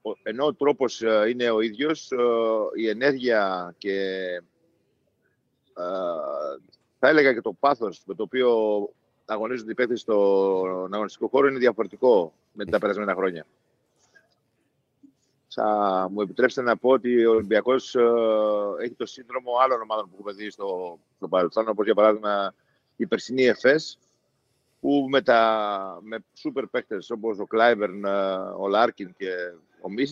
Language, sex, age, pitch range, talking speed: Greek, male, 50-69, 105-130 Hz, 135 wpm